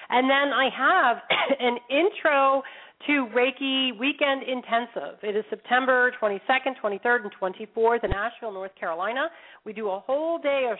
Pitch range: 190-240 Hz